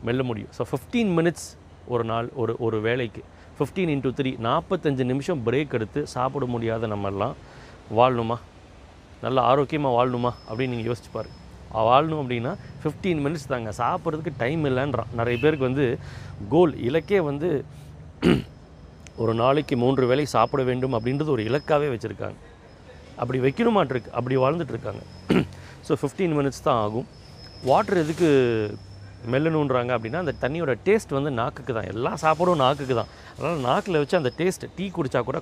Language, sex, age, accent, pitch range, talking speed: Tamil, male, 30-49, native, 115-150 Hz, 135 wpm